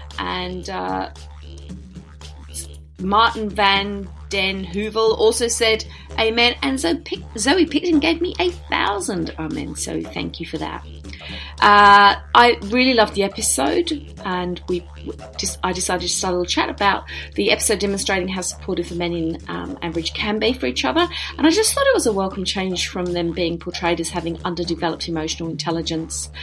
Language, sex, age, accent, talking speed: English, female, 30-49, British, 175 wpm